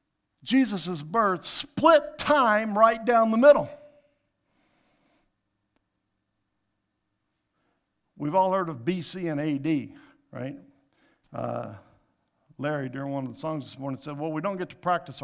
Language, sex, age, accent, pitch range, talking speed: English, male, 50-69, American, 135-195 Hz, 125 wpm